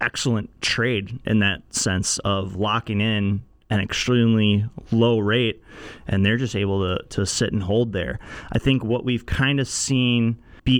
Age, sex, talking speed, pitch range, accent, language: 30-49, male, 165 wpm, 105-125 Hz, American, English